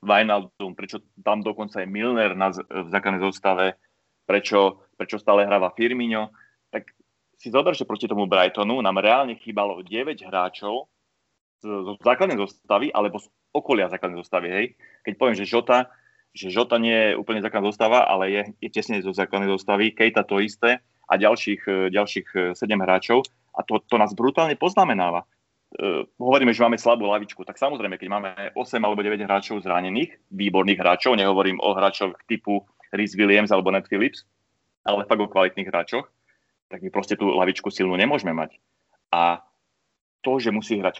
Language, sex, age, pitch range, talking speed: Slovak, male, 30-49, 95-110 Hz, 160 wpm